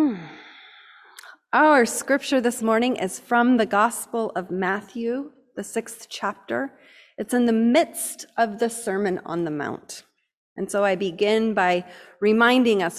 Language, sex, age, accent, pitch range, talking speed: English, female, 30-49, American, 200-275 Hz, 140 wpm